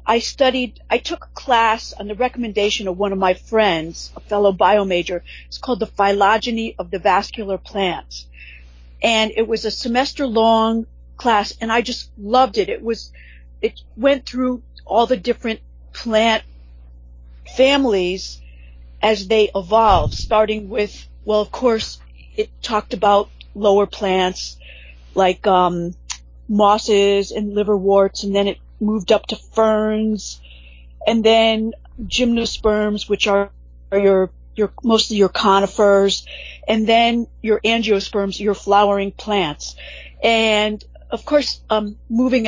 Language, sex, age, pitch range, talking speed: English, female, 40-59, 185-225 Hz, 135 wpm